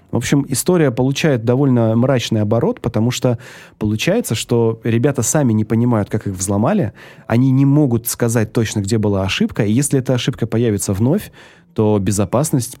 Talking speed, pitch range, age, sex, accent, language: 160 wpm, 105-130 Hz, 20-39, male, native, Russian